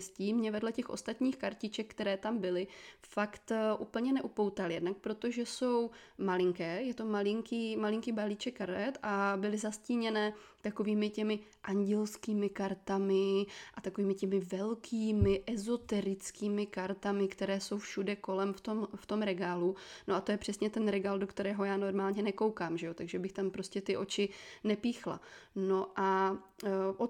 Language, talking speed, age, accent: Czech, 150 wpm, 20-39, native